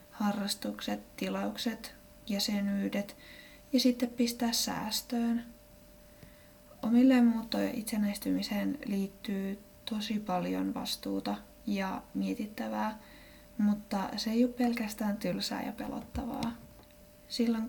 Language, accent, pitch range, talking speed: Finnish, native, 200-245 Hz, 85 wpm